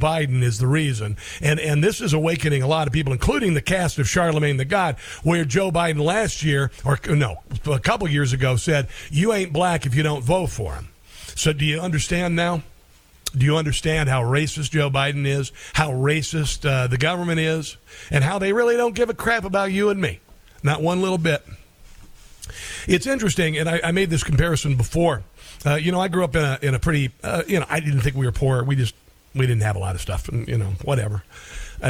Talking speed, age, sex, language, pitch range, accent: 220 wpm, 50-69, male, English, 125-165 Hz, American